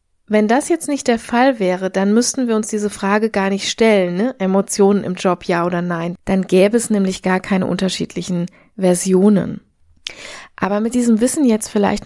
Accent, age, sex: German, 20-39, female